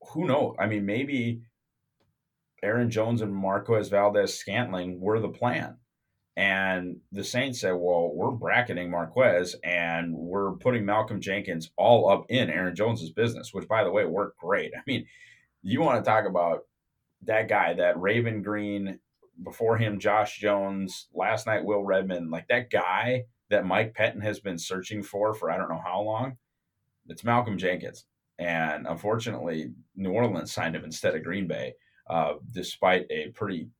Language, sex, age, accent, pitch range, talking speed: English, male, 30-49, American, 90-115 Hz, 165 wpm